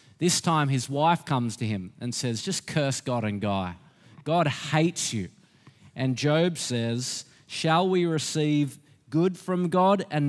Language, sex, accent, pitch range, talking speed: English, male, Australian, 135-175 Hz, 155 wpm